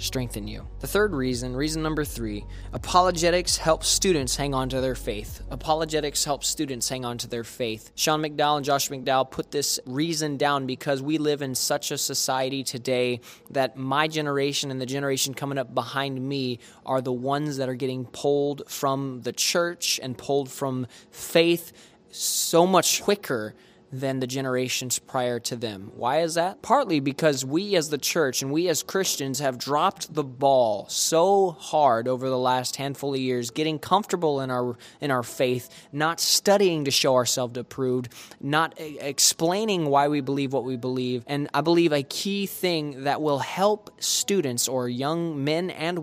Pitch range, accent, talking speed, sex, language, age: 130-160 Hz, American, 175 wpm, male, English, 20-39